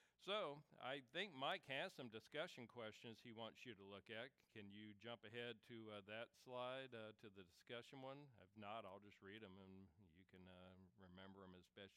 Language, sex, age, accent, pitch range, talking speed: English, male, 50-69, American, 90-115 Hz, 205 wpm